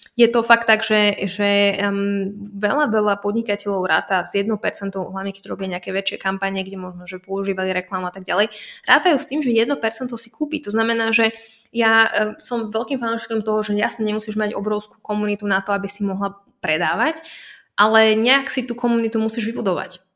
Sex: female